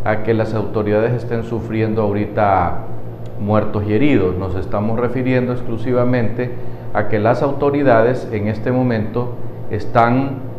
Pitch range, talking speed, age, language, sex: 115-130 Hz, 125 wpm, 50-69, Spanish, male